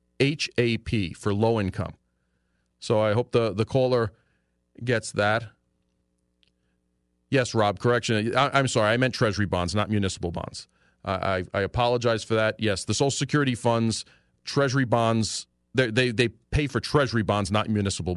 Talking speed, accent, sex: 155 wpm, American, male